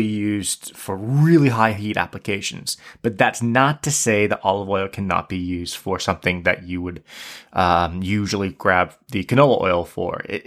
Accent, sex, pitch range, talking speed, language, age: American, male, 95-120 Hz, 170 wpm, English, 20-39